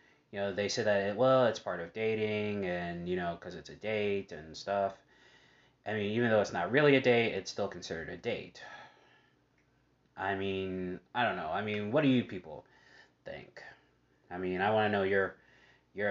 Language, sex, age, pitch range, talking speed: English, male, 20-39, 95-110 Hz, 200 wpm